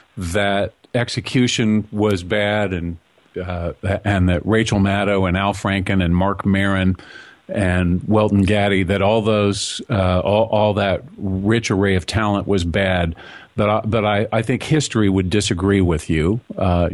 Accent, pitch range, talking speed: American, 95-120 Hz, 150 wpm